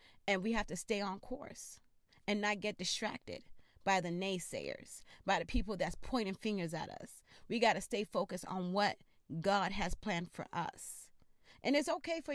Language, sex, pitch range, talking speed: English, female, 190-255 Hz, 185 wpm